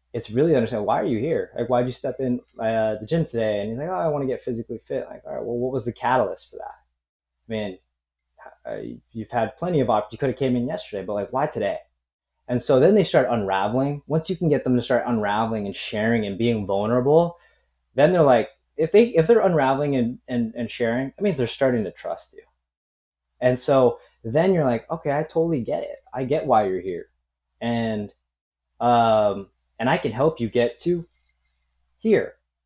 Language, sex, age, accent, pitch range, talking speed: English, male, 20-39, American, 105-140 Hz, 215 wpm